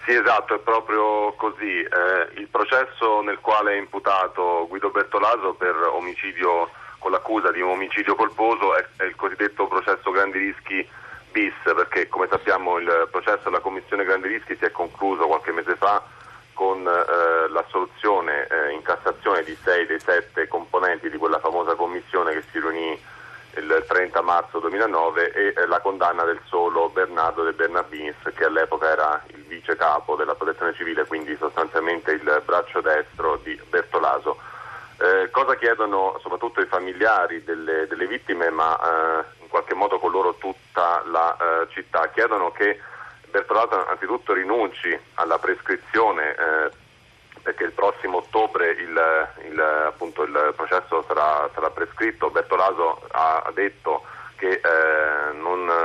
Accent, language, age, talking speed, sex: native, Italian, 30-49, 150 wpm, male